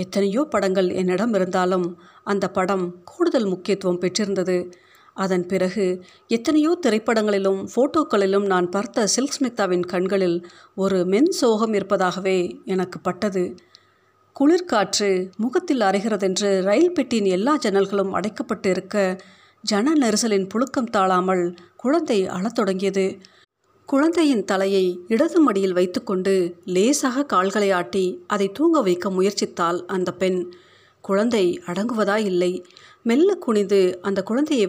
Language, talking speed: Tamil, 105 wpm